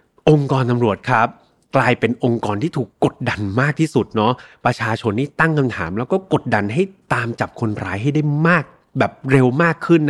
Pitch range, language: 120-160 Hz, Thai